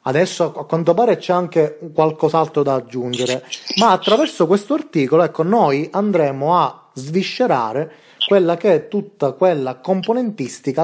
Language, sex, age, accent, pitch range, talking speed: Italian, male, 30-49, native, 135-190 Hz, 135 wpm